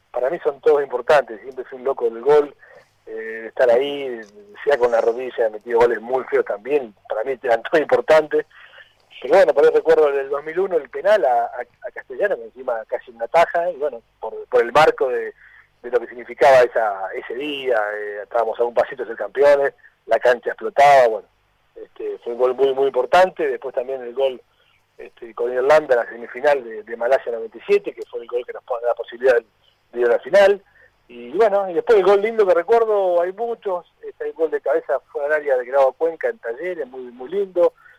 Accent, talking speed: Argentinian, 210 wpm